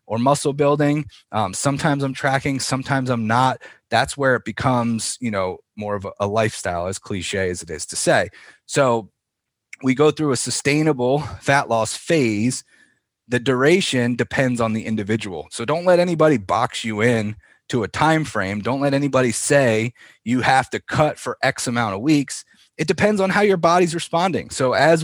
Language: English